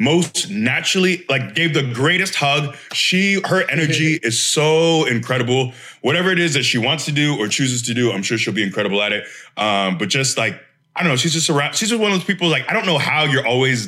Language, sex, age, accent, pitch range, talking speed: English, male, 20-39, American, 115-160 Hz, 240 wpm